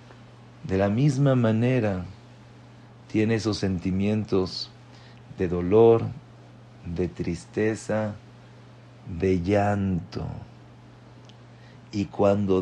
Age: 50-69